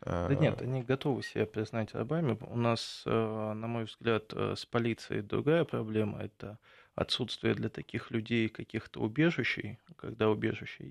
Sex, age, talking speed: male, 20-39, 140 wpm